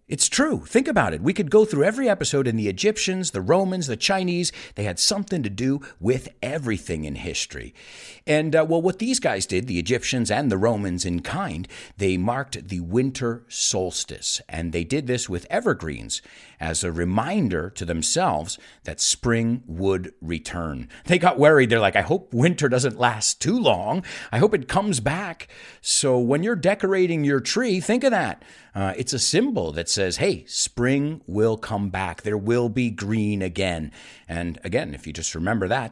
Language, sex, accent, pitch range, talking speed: English, male, American, 95-150 Hz, 185 wpm